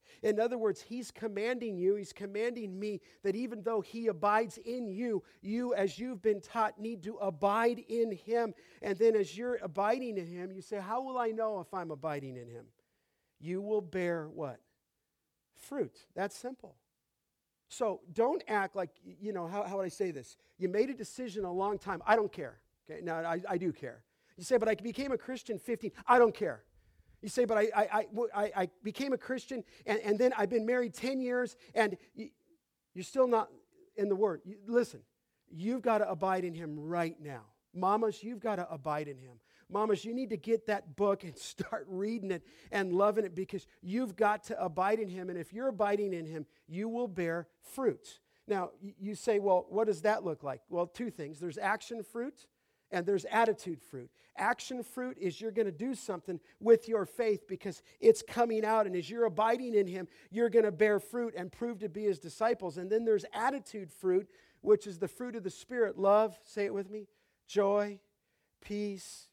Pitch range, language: 185-230 Hz, English